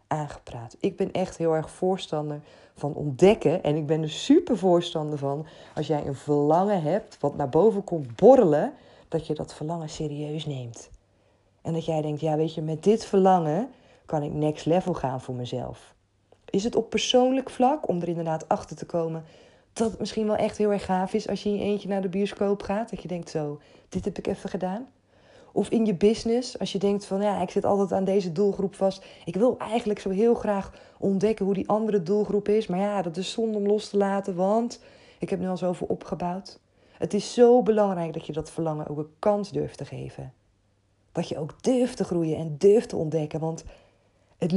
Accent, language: Dutch, Dutch